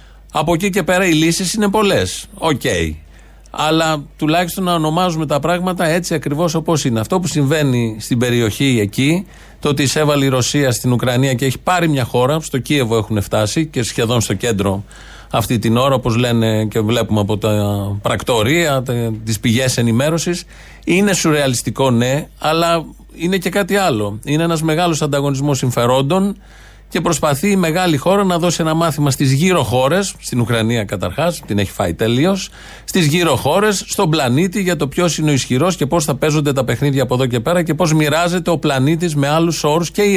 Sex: male